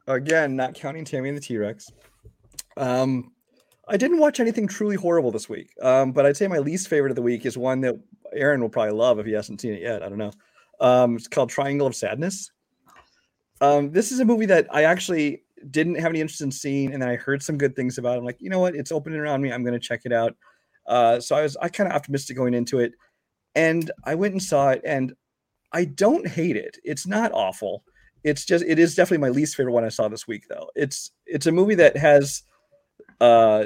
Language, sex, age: English, male, 30-49